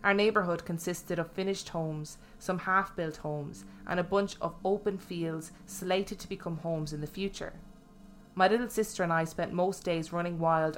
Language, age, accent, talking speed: English, 20-39, Irish, 180 wpm